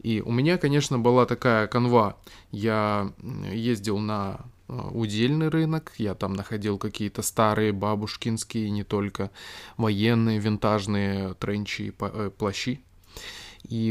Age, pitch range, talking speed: 20-39, 100-140 Hz, 110 wpm